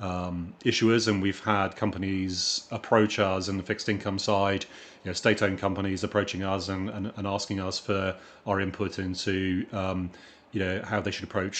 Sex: male